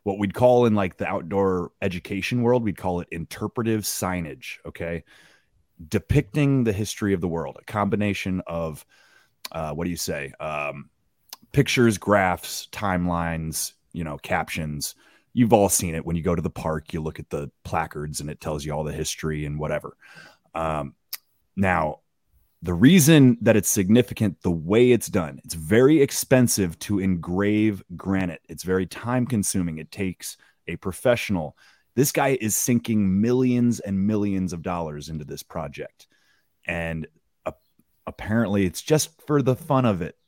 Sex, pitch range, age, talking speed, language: male, 85-110 Hz, 30-49, 160 wpm, English